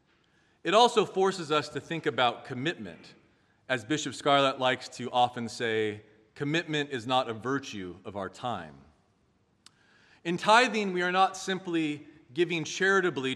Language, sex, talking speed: English, male, 140 wpm